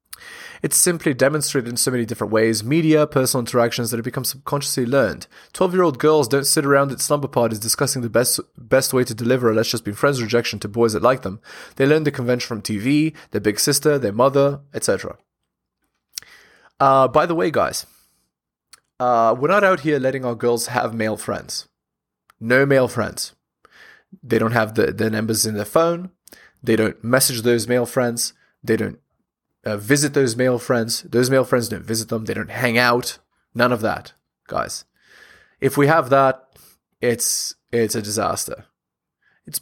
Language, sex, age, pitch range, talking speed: English, male, 20-39, 115-140 Hz, 175 wpm